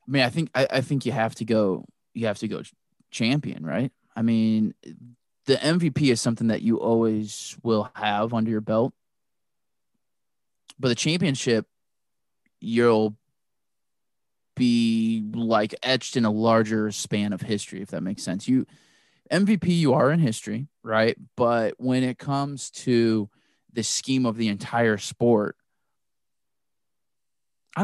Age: 20-39